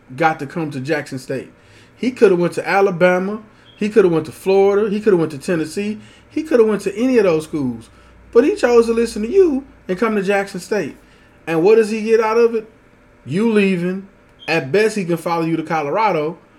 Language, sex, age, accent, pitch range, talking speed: English, male, 20-39, American, 160-225 Hz, 230 wpm